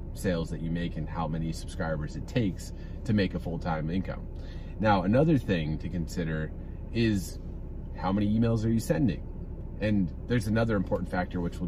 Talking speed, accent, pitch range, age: 180 wpm, American, 90-120 Hz, 30-49